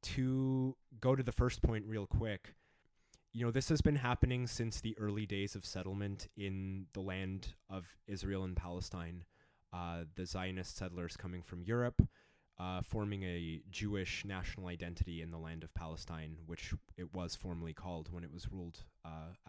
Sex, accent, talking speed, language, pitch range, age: male, American, 170 wpm, English, 90-105 Hz, 20-39